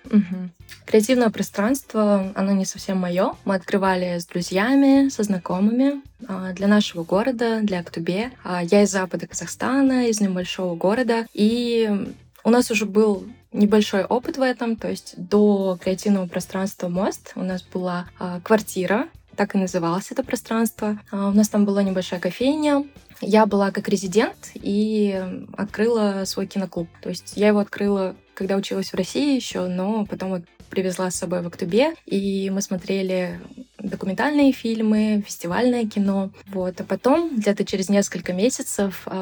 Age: 20-39